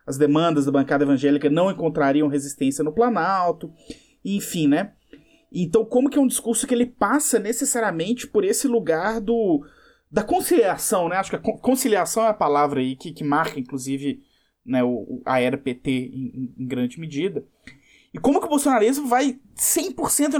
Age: 20-39